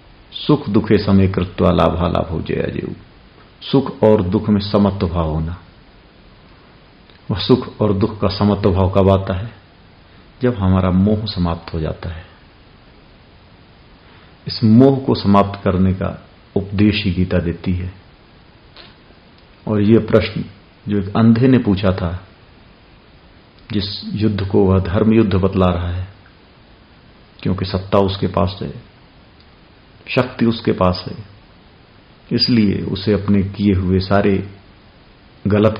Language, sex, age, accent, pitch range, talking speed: Hindi, male, 50-69, native, 90-105 Hz, 125 wpm